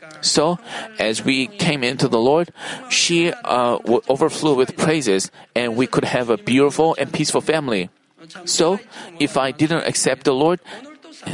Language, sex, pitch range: Korean, male, 130-170 Hz